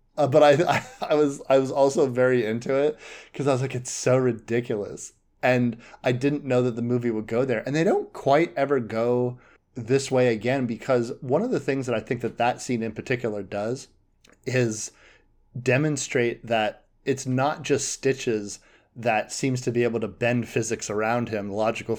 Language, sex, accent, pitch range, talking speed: English, male, American, 110-130 Hz, 190 wpm